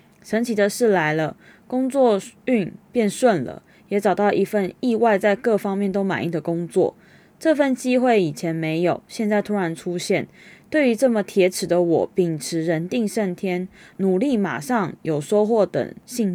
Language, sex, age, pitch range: Chinese, female, 20-39, 170-225 Hz